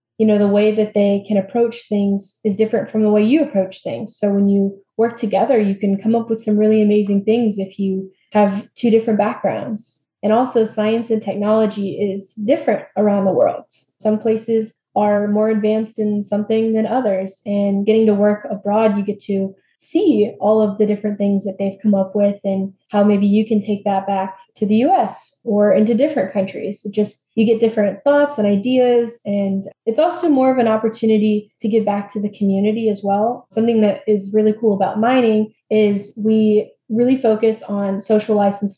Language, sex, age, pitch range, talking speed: English, female, 10-29, 200-225 Hz, 195 wpm